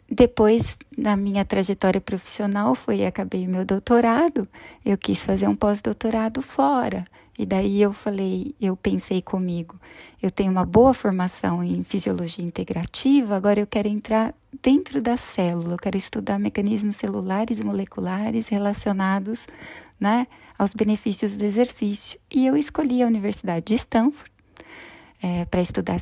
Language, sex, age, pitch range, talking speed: Portuguese, female, 20-39, 190-235 Hz, 140 wpm